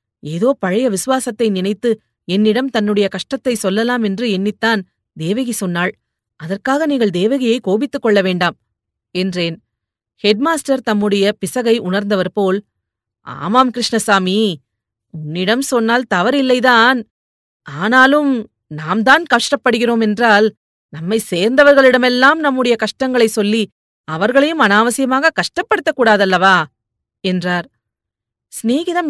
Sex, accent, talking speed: female, native, 95 wpm